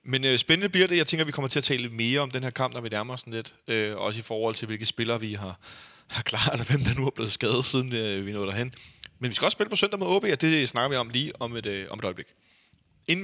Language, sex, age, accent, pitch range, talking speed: Danish, male, 30-49, native, 105-135 Hz, 305 wpm